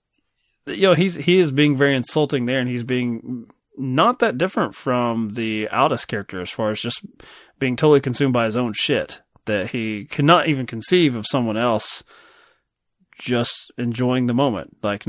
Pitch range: 110-140 Hz